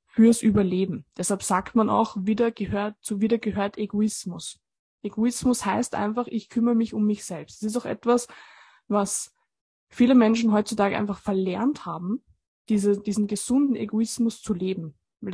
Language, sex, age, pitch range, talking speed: German, female, 20-39, 200-235 Hz, 155 wpm